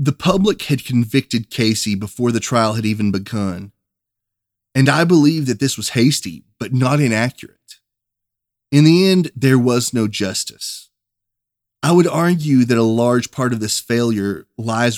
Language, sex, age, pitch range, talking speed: English, male, 20-39, 105-130 Hz, 155 wpm